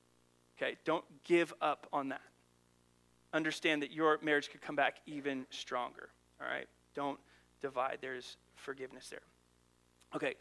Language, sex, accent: English, male, American